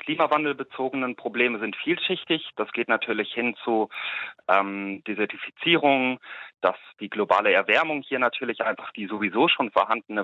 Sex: male